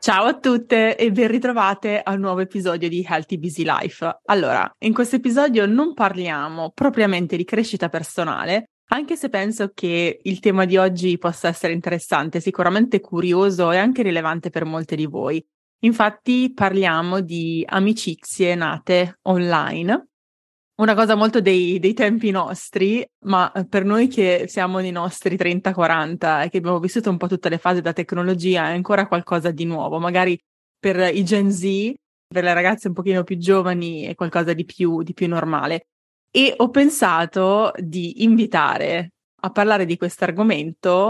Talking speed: 160 wpm